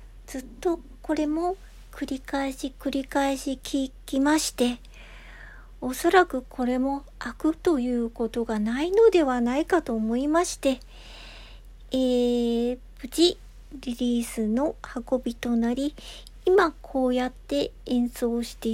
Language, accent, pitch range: Japanese, native, 235-290 Hz